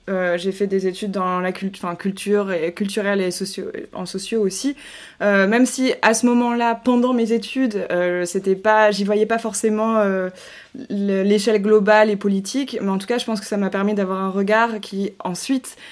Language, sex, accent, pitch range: French, female, French, 195-230 Hz